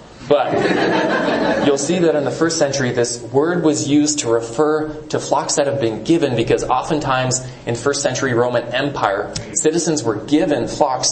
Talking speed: 165 wpm